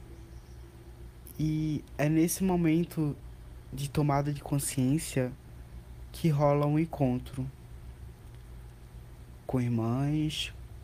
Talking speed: 80 wpm